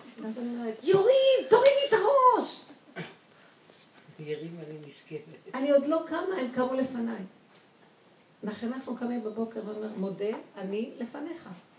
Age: 50-69